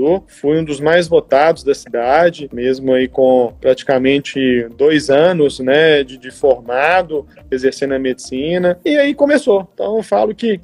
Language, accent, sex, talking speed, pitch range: Portuguese, Brazilian, male, 150 wpm, 140-180 Hz